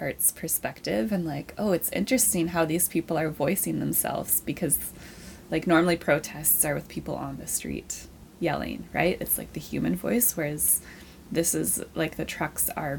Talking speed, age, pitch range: 165 wpm, 20-39, 155-180 Hz